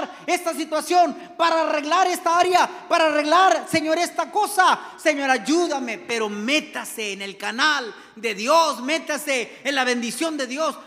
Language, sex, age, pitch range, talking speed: Spanish, male, 40-59, 235-315 Hz, 145 wpm